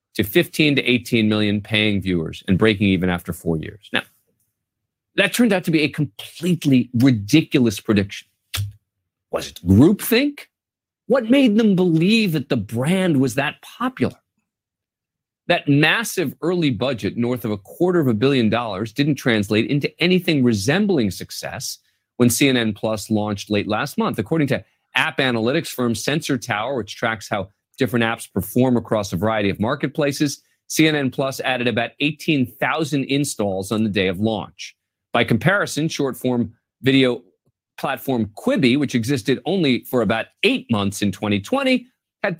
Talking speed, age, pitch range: 150 wpm, 40-59, 105-150 Hz